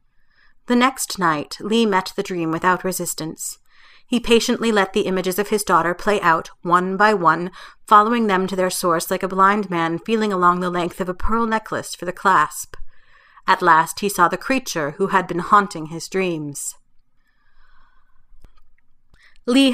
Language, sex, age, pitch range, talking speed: English, female, 30-49, 170-215 Hz, 165 wpm